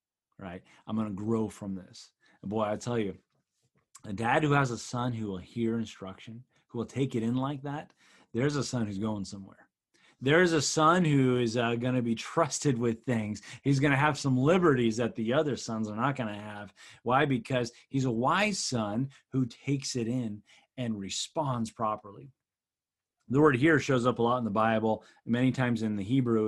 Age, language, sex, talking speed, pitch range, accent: 30-49, English, male, 200 wpm, 110-145 Hz, American